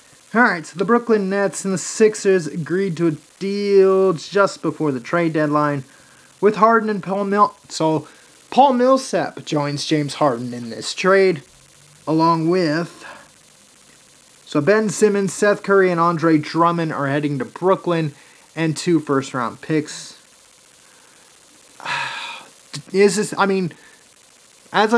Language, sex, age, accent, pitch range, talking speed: English, male, 30-49, American, 155-205 Hz, 130 wpm